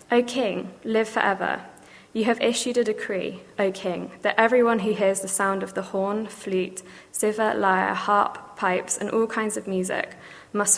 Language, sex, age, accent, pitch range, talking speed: English, female, 20-39, British, 190-215 Hz, 175 wpm